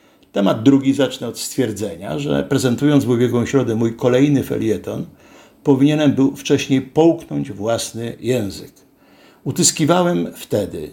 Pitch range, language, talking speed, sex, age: 110-145 Hz, Polish, 115 wpm, male, 60-79